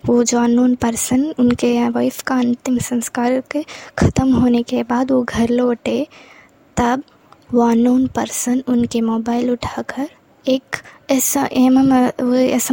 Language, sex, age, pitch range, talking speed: Hindi, female, 20-39, 240-265 Hz, 125 wpm